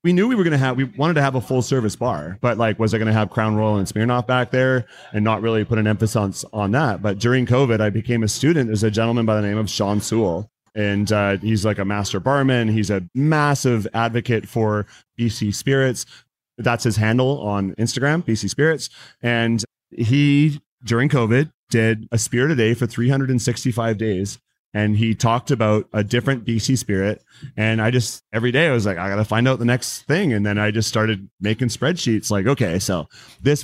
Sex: male